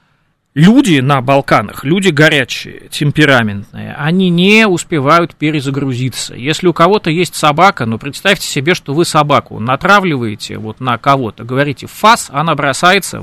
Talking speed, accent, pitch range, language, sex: 135 wpm, native, 130-180 Hz, Russian, male